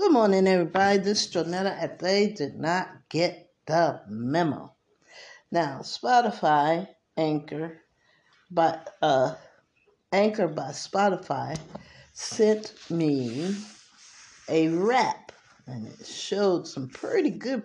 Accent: American